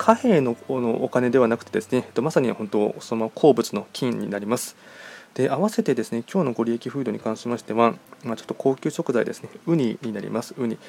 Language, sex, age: Japanese, male, 20-39